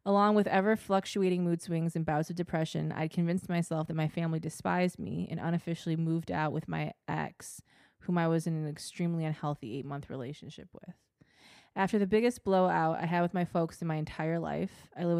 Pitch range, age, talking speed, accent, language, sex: 155-180 Hz, 20-39, 195 wpm, American, English, female